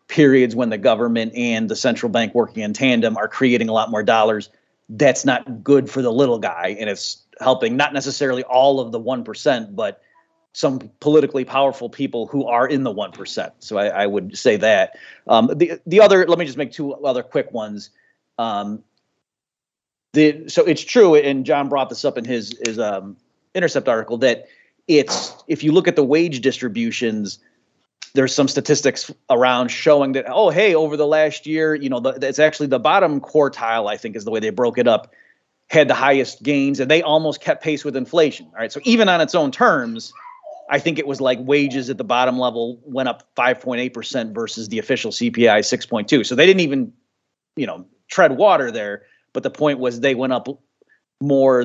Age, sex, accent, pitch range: 30-49, male, American, 120-150 Hz